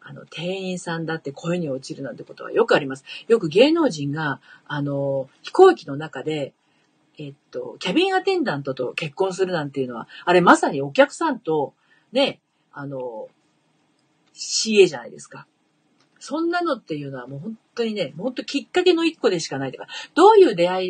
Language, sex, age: Japanese, female, 40-59